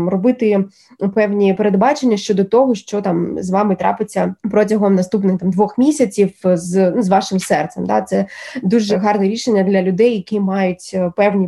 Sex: female